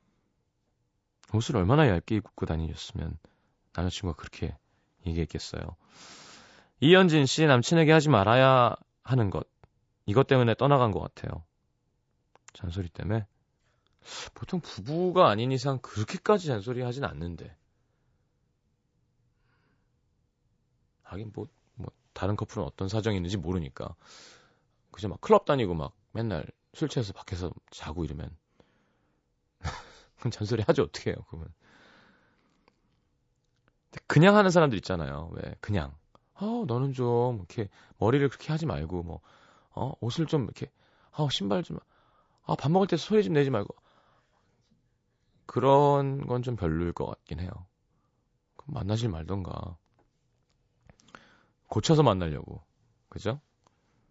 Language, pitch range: Korean, 95-140 Hz